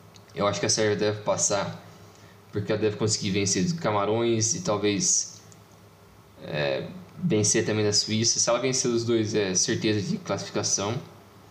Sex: male